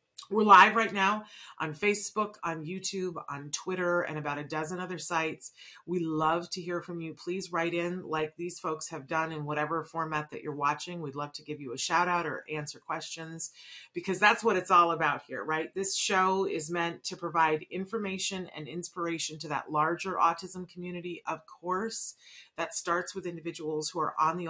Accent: American